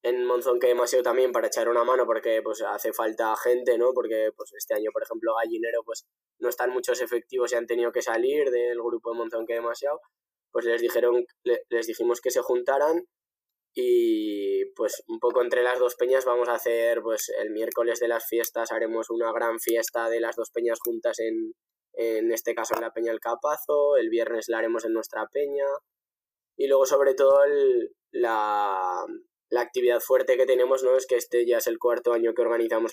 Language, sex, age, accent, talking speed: Spanish, male, 10-29, Spanish, 200 wpm